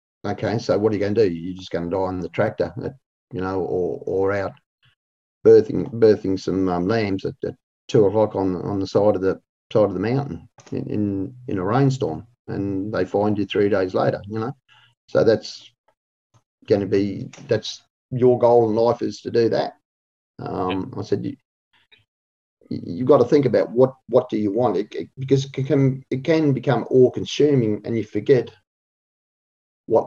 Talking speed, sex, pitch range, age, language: 185 wpm, male, 95-135 Hz, 40-59, English